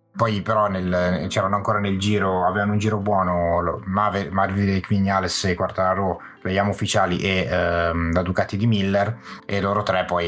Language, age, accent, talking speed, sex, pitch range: Italian, 30-49, native, 165 wpm, male, 90-110 Hz